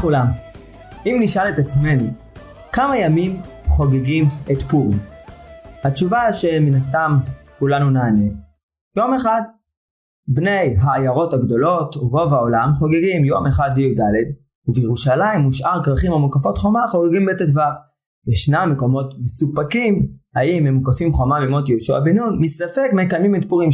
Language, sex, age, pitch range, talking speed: Hebrew, male, 20-39, 130-175 Hz, 120 wpm